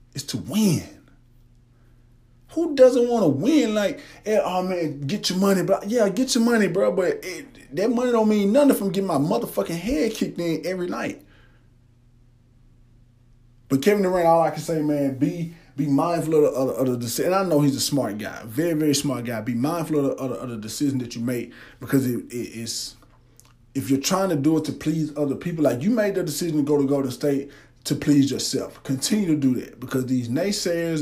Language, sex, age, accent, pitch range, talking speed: English, male, 20-39, American, 130-175 Hz, 215 wpm